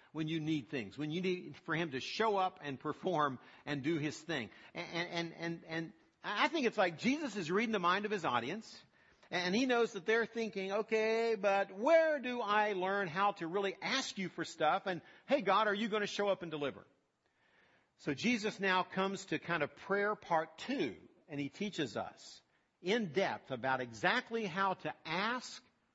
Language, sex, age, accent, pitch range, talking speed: English, male, 50-69, American, 150-210 Hz, 195 wpm